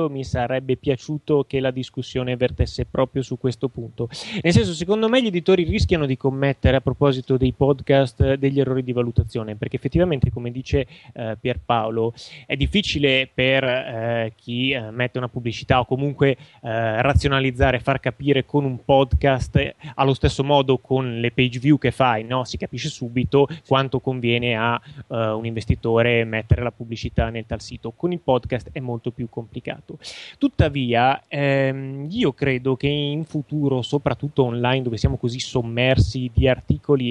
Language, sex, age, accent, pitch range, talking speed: Italian, male, 20-39, native, 120-140 Hz, 160 wpm